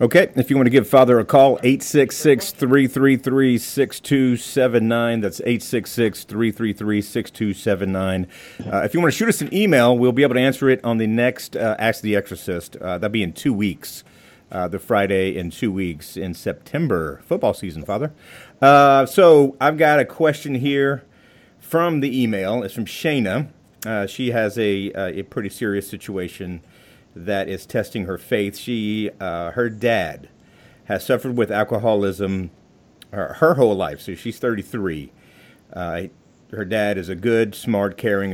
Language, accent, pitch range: English, American, 100-125 Hz